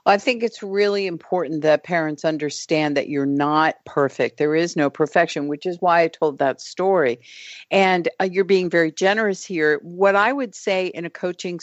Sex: female